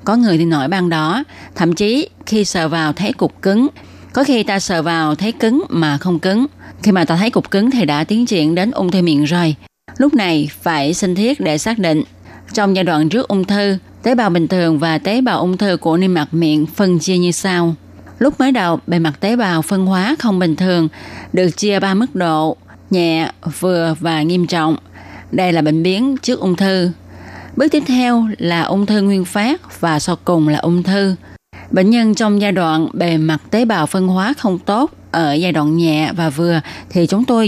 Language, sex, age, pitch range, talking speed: Vietnamese, female, 20-39, 160-210 Hz, 215 wpm